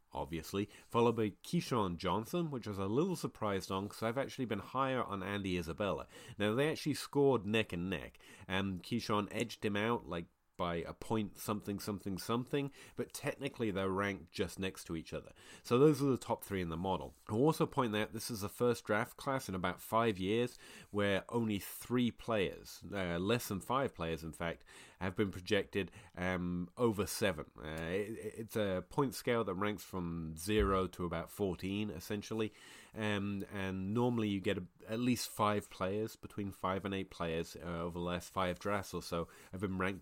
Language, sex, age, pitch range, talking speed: English, male, 30-49, 90-115 Hz, 190 wpm